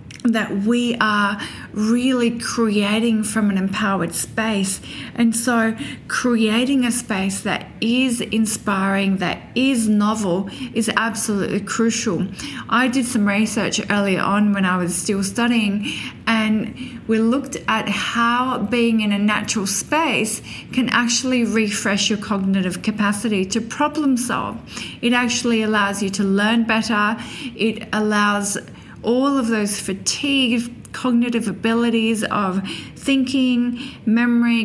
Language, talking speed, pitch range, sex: English, 125 wpm, 205-235 Hz, female